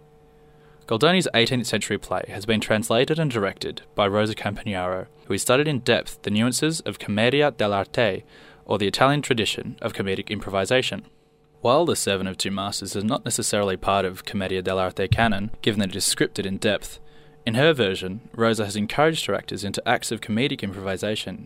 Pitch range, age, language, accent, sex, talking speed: 100-140 Hz, 20-39, English, Australian, male, 175 wpm